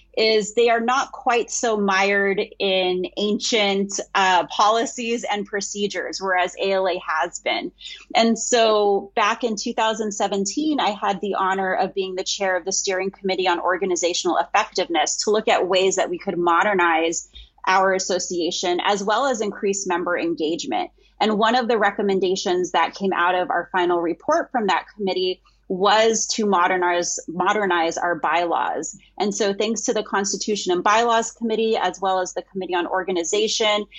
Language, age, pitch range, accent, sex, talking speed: English, 30-49, 185-220 Hz, American, female, 160 wpm